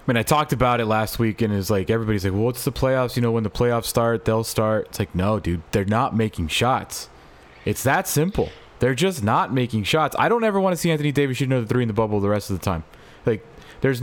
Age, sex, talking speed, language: 20-39, male, 265 wpm, English